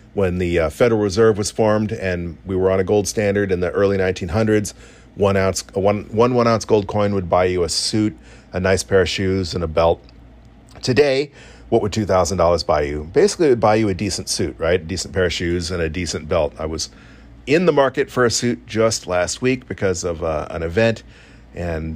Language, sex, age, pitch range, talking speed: English, male, 40-59, 90-110 Hz, 215 wpm